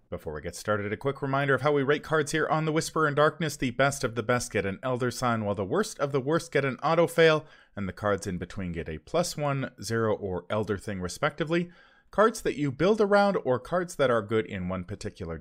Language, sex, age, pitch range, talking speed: English, male, 30-49, 110-180 Hz, 250 wpm